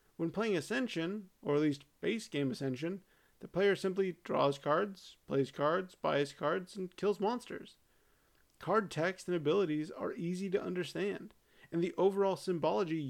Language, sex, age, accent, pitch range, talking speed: English, male, 30-49, American, 145-190 Hz, 150 wpm